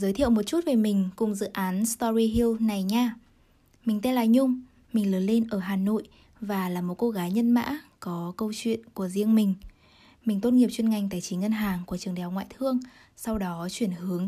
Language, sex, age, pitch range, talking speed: Vietnamese, female, 10-29, 190-235 Hz, 225 wpm